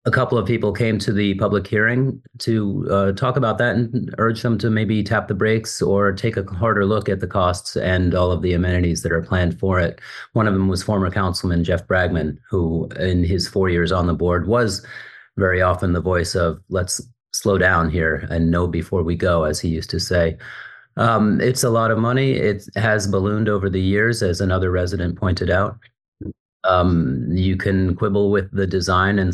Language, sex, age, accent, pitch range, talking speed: English, male, 30-49, American, 85-105 Hz, 205 wpm